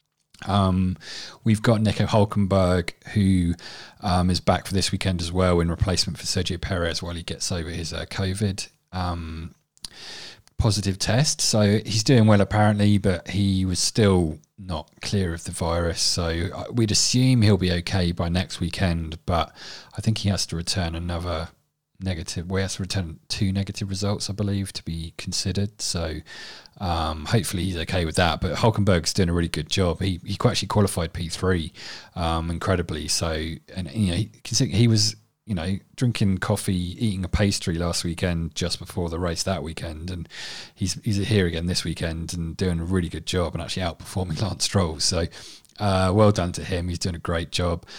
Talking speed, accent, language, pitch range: 185 wpm, British, English, 85-100 Hz